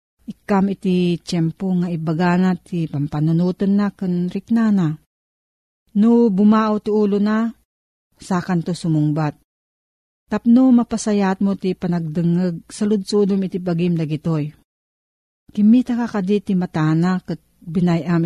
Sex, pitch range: female, 170-210 Hz